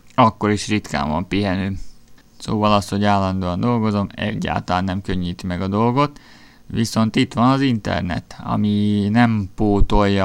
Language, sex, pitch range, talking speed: Hungarian, male, 100-110 Hz, 140 wpm